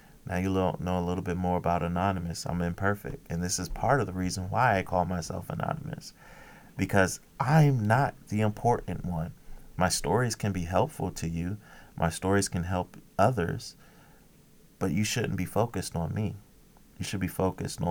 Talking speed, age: 175 wpm, 30-49